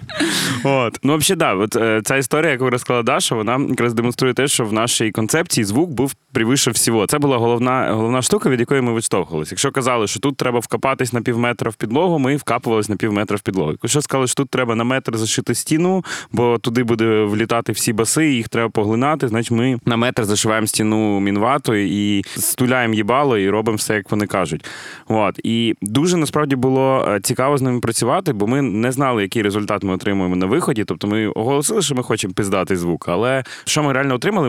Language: Ukrainian